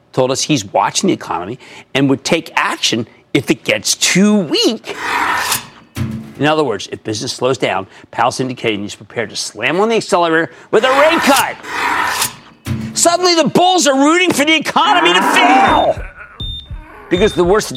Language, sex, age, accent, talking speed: English, male, 50-69, American, 165 wpm